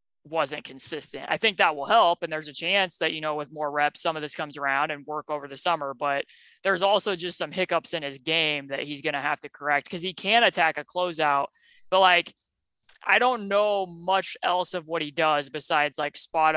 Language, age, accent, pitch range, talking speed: English, 20-39, American, 145-170 Hz, 225 wpm